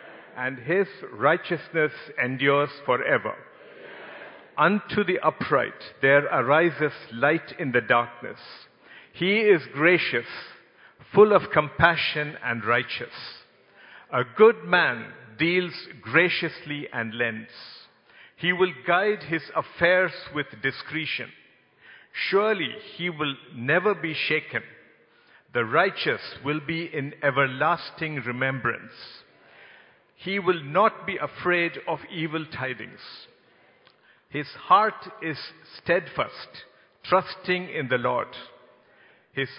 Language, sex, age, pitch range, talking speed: English, male, 50-69, 135-180 Hz, 100 wpm